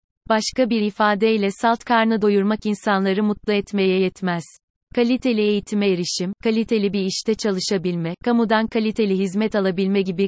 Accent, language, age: native, Turkish, 30-49